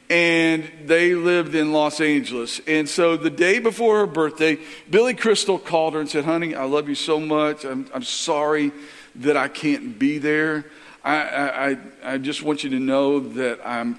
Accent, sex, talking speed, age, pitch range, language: American, male, 185 wpm, 50-69, 135-205 Hz, English